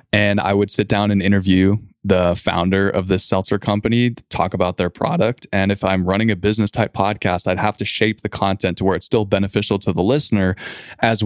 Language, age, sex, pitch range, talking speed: English, 20-39, male, 90-110 Hz, 215 wpm